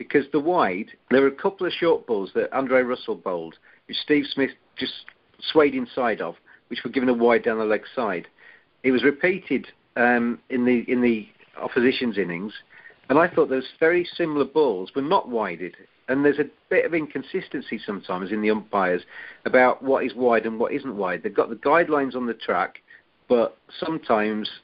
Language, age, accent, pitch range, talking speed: English, 50-69, British, 120-145 Hz, 185 wpm